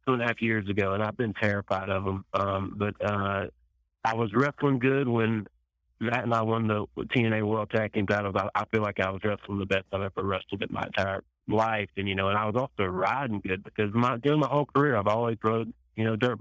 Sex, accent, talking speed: male, American, 240 wpm